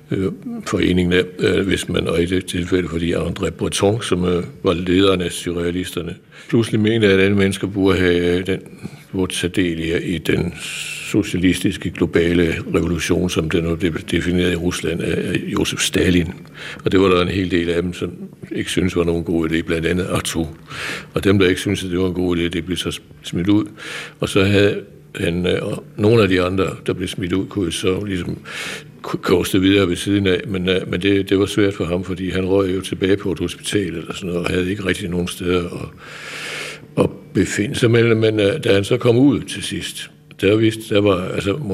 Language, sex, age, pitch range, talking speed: Danish, male, 60-79, 85-100 Hz, 200 wpm